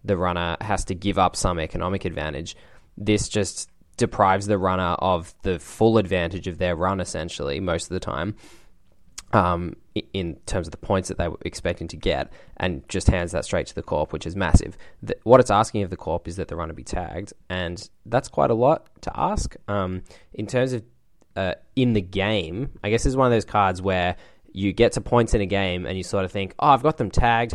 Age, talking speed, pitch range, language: 10-29, 220 wpm, 90-105 Hz, English